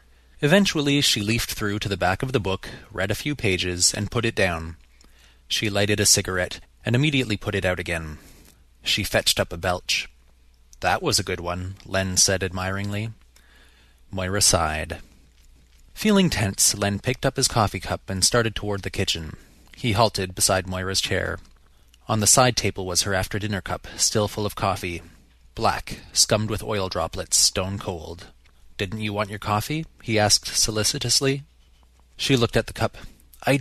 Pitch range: 80-110 Hz